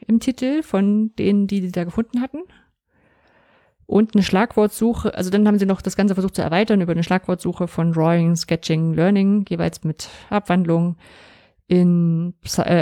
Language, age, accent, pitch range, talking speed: German, 30-49, German, 165-200 Hz, 160 wpm